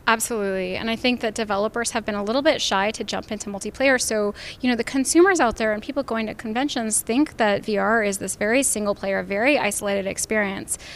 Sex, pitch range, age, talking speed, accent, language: female, 205-240 Hz, 10-29, 215 wpm, American, English